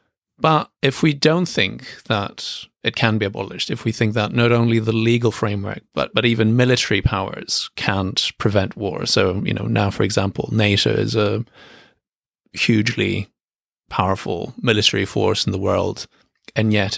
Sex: male